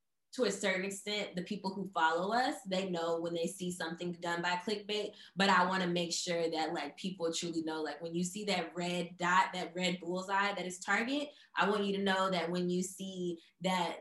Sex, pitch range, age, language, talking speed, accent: female, 175-210 Hz, 20-39, English, 220 wpm, American